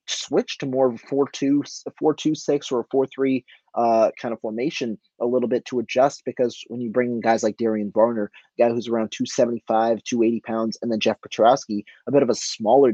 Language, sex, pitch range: English, male, 110-130 Hz